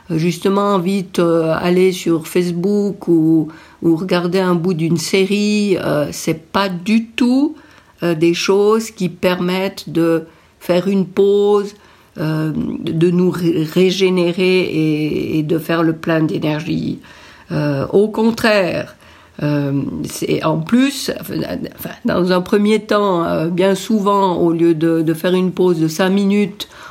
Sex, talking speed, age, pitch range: female, 145 wpm, 50-69, 165-205 Hz